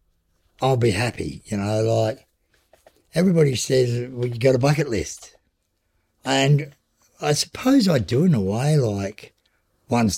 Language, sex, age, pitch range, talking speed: English, male, 60-79, 85-120 Hz, 145 wpm